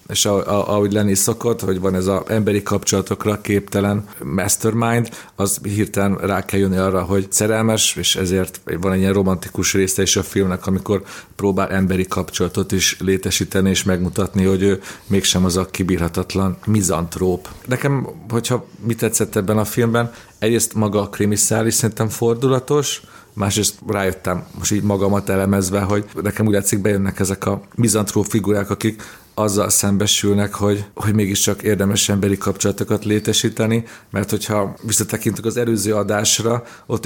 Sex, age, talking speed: male, 40-59, 150 wpm